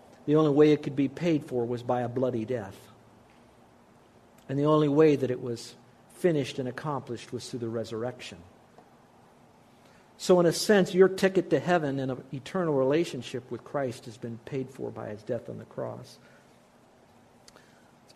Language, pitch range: English, 120-150 Hz